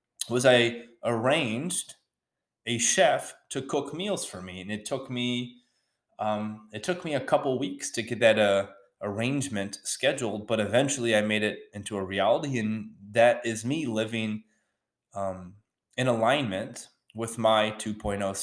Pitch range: 100-115 Hz